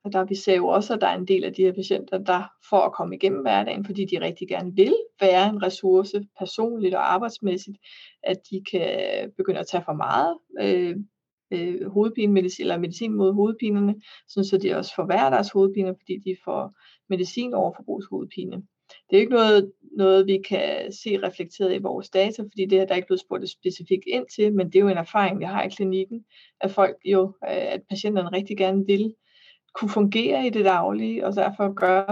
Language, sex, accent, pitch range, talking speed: Danish, female, native, 185-210 Hz, 200 wpm